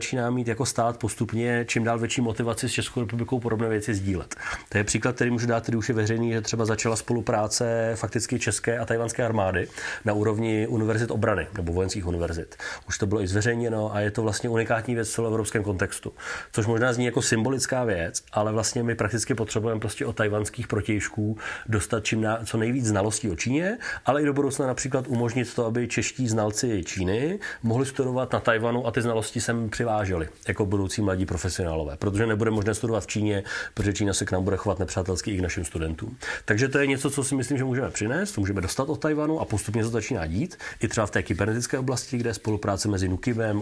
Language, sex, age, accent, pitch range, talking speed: English, male, 30-49, Czech, 105-120 Hz, 205 wpm